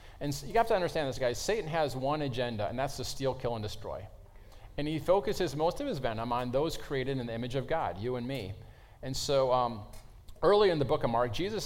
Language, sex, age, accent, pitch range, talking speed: English, male, 40-59, American, 115-155 Hz, 235 wpm